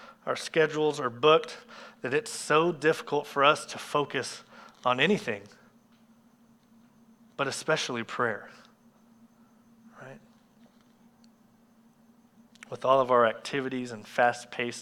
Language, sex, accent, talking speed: English, male, American, 105 wpm